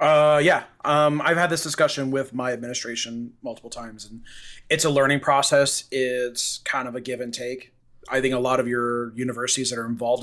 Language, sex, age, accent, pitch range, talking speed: English, male, 30-49, American, 125-140 Hz, 200 wpm